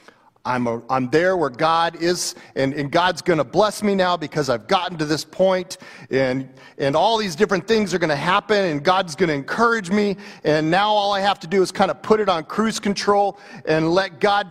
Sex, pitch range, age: male, 165-200 Hz, 40-59